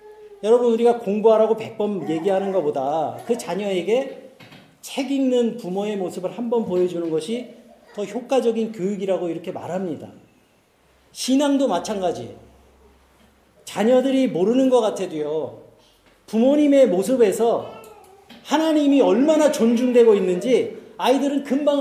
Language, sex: Korean, male